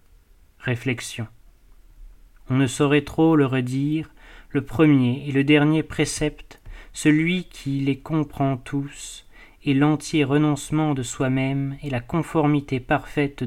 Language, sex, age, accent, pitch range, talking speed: French, male, 30-49, French, 130-150 Hz, 120 wpm